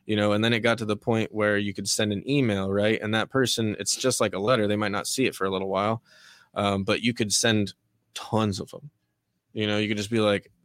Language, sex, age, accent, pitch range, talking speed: English, male, 20-39, American, 105-125 Hz, 270 wpm